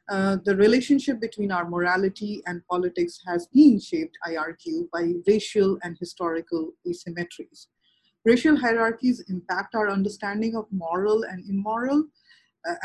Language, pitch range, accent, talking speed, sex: English, 175-220 Hz, Indian, 130 wpm, female